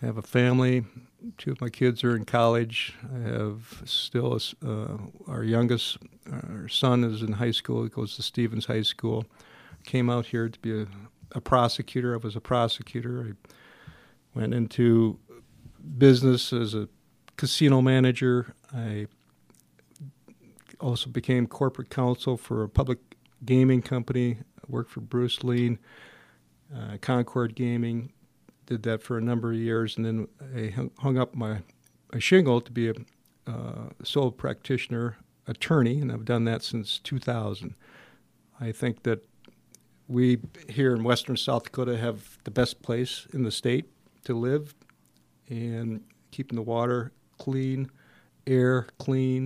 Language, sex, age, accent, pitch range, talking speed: English, male, 50-69, American, 110-130 Hz, 145 wpm